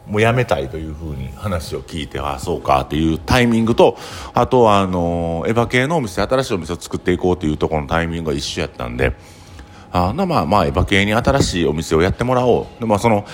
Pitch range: 80-115 Hz